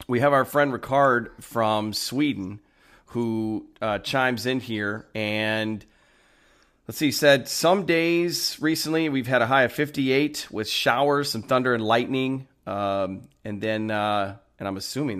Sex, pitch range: male, 100-125 Hz